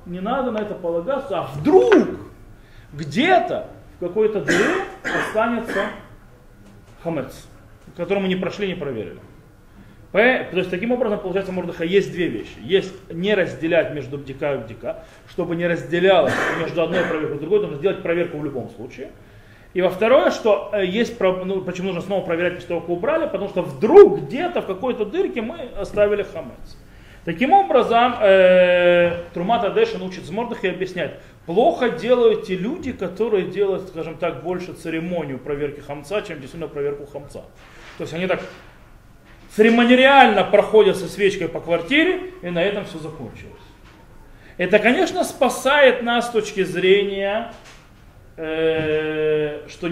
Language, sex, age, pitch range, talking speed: Russian, male, 20-39, 160-215 Hz, 140 wpm